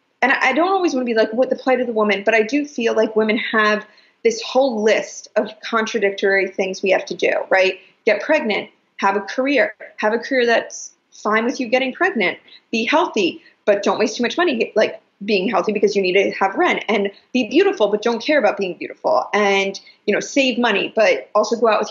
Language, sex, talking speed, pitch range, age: English, female, 225 wpm, 200-255 Hz, 20-39